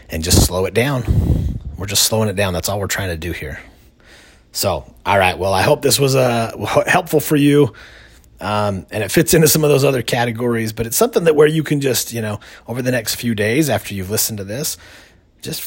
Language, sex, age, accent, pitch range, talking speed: English, male, 30-49, American, 85-120 Hz, 230 wpm